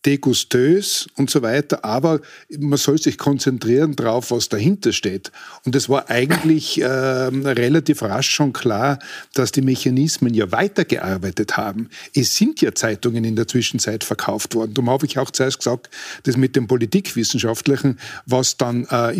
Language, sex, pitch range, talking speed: German, male, 120-145 Hz, 155 wpm